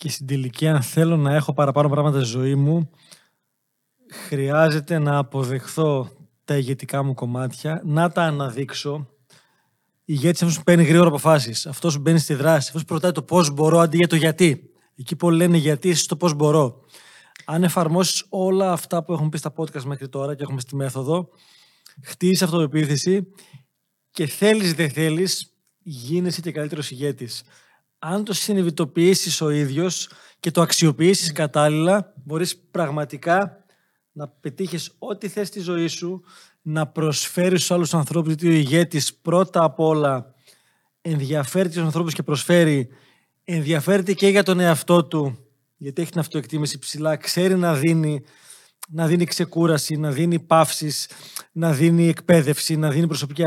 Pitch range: 145-175 Hz